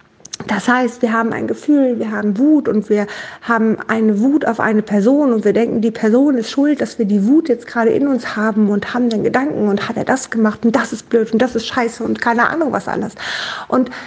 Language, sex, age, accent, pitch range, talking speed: German, female, 50-69, German, 215-265 Hz, 240 wpm